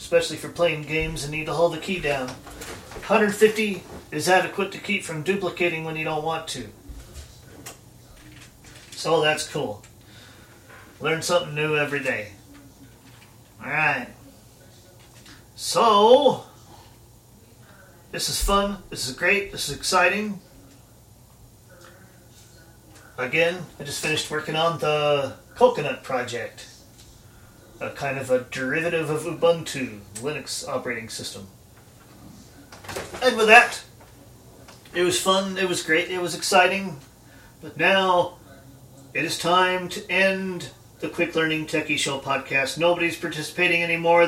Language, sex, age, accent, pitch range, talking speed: English, male, 40-59, American, 120-170 Hz, 120 wpm